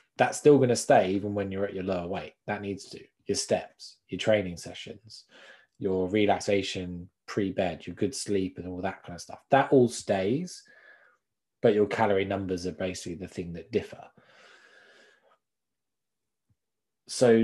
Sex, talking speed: male, 160 wpm